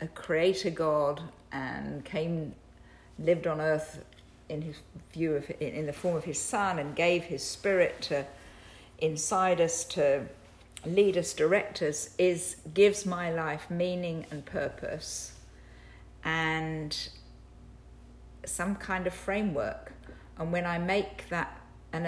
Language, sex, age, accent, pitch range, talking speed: English, female, 50-69, British, 145-185 Hz, 130 wpm